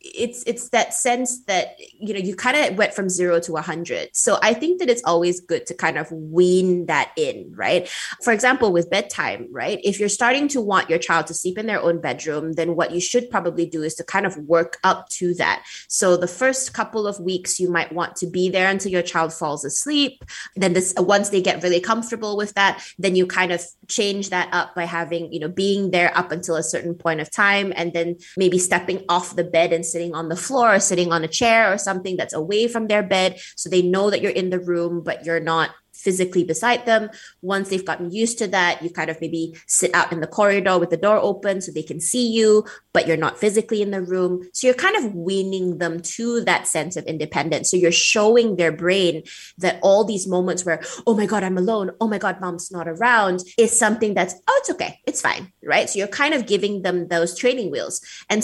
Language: English